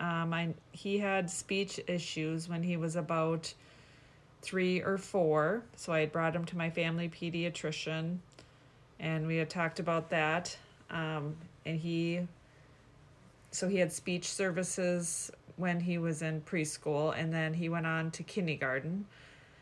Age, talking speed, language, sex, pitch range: 30-49, 145 wpm, English, female, 155-175 Hz